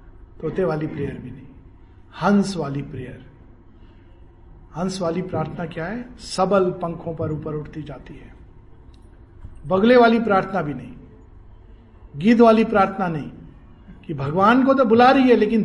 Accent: native